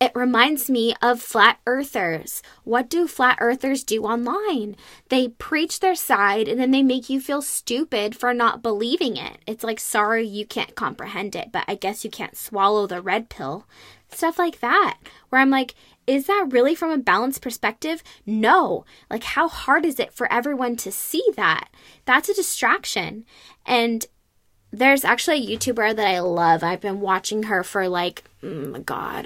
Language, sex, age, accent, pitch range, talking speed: English, female, 10-29, American, 205-260 Hz, 180 wpm